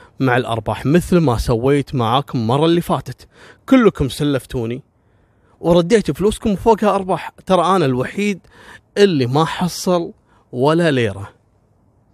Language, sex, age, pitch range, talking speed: Arabic, male, 30-49, 120-180 Hz, 115 wpm